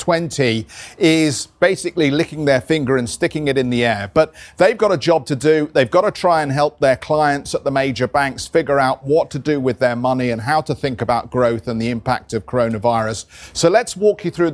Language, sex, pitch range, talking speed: English, male, 130-165 Hz, 225 wpm